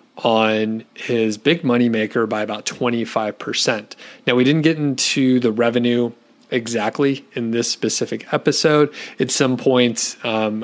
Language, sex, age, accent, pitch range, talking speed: English, male, 30-49, American, 110-130 Hz, 135 wpm